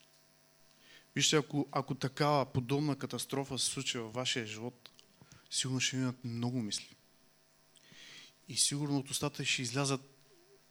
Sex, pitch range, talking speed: male, 130-150 Hz, 125 wpm